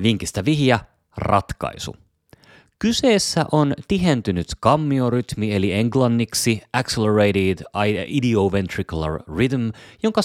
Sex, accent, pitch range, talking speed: male, native, 85-115 Hz, 75 wpm